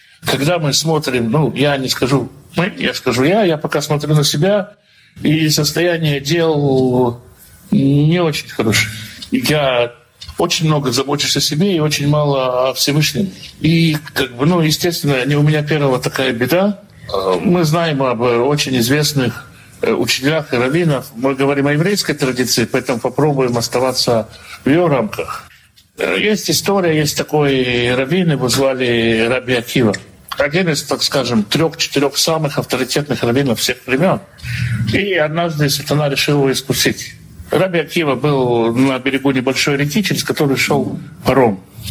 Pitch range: 125-155 Hz